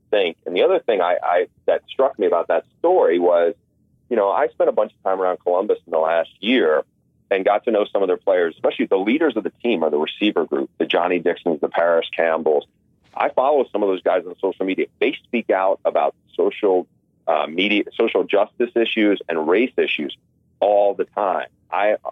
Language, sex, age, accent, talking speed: English, male, 40-59, American, 205 wpm